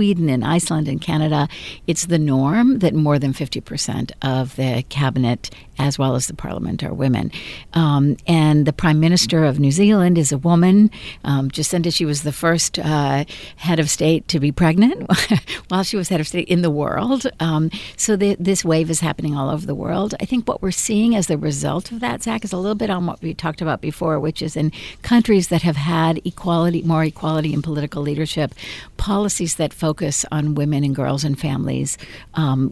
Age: 60-79